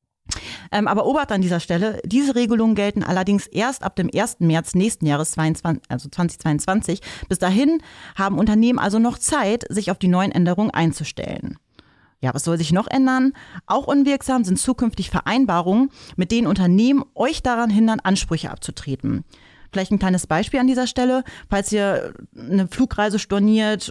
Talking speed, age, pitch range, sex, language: 155 wpm, 30-49, 175-230 Hz, female, German